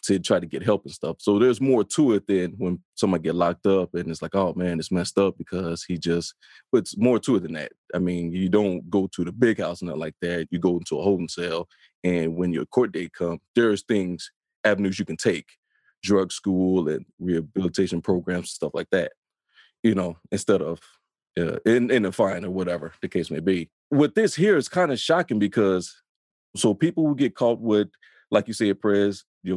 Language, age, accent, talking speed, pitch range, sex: English, 20-39, American, 225 wpm, 90-115 Hz, male